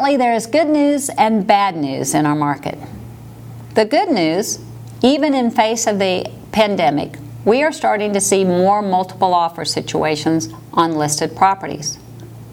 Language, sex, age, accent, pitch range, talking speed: English, female, 50-69, American, 145-195 Hz, 150 wpm